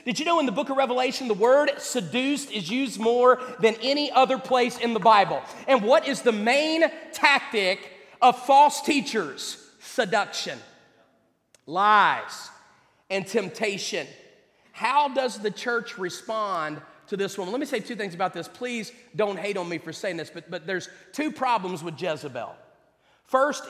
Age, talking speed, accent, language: 40-59, 165 wpm, American, English